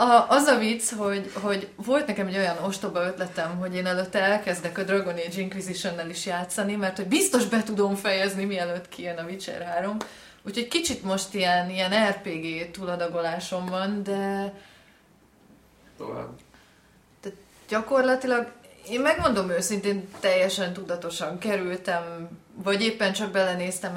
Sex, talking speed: female, 135 wpm